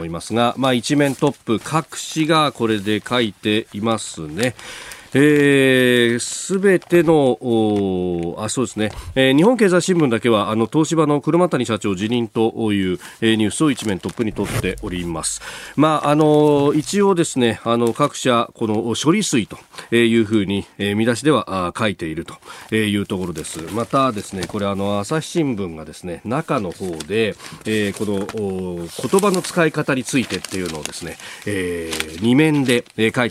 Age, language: 40-59, Japanese